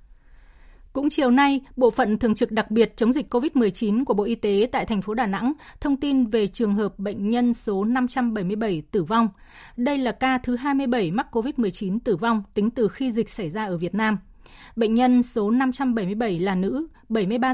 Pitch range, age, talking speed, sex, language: 205-255 Hz, 20-39, 195 wpm, female, Vietnamese